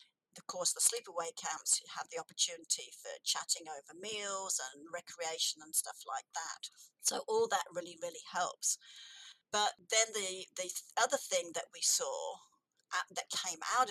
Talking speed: 165 wpm